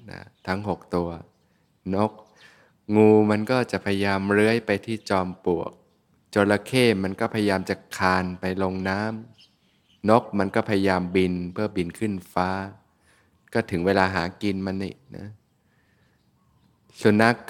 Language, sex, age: Thai, male, 20-39